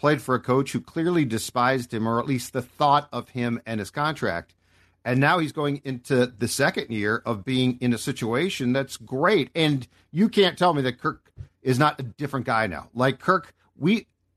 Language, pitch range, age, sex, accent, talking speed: English, 110-150 Hz, 50-69, male, American, 205 wpm